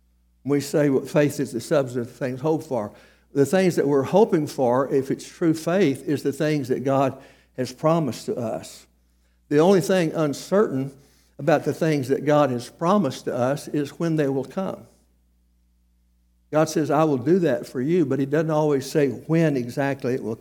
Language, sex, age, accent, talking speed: English, male, 60-79, American, 190 wpm